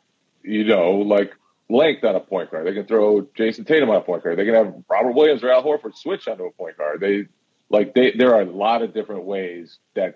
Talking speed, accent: 235 wpm, American